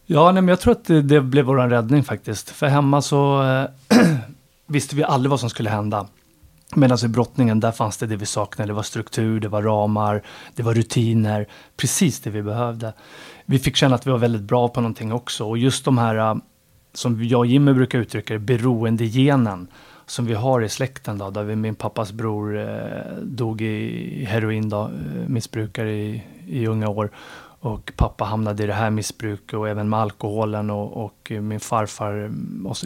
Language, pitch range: Swedish, 110-135 Hz